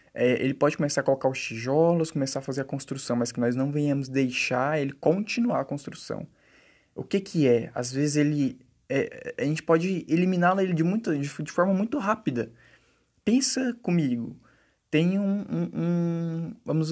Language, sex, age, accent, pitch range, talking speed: Portuguese, male, 20-39, Brazilian, 125-160 Hz, 175 wpm